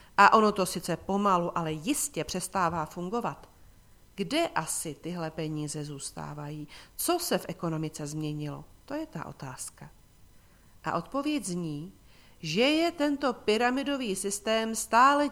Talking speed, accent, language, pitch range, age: 125 wpm, native, Czech, 160-220 Hz, 40-59